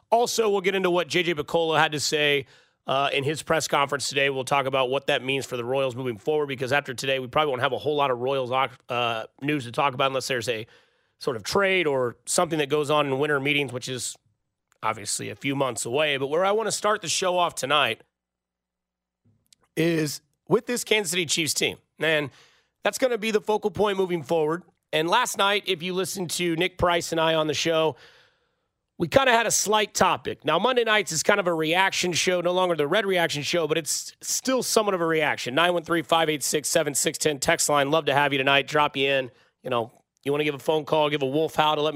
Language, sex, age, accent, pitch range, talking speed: English, male, 30-49, American, 140-185 Hz, 230 wpm